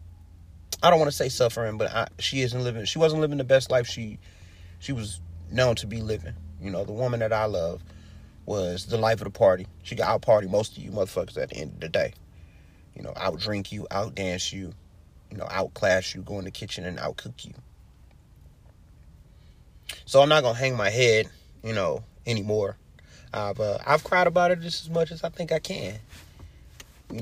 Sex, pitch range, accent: male, 85-115 Hz, American